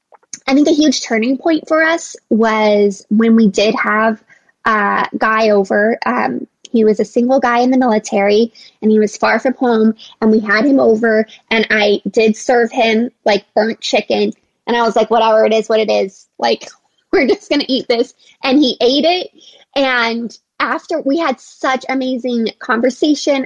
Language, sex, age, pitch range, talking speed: English, female, 20-39, 215-260 Hz, 185 wpm